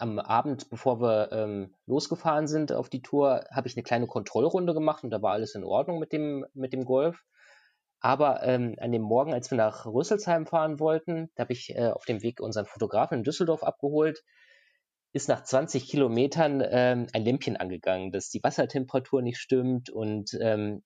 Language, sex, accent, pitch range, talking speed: German, male, German, 110-140 Hz, 185 wpm